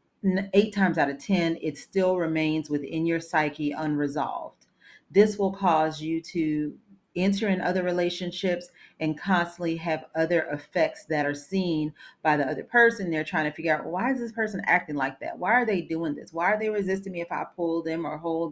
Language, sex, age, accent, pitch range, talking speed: English, female, 40-59, American, 155-185 Hz, 200 wpm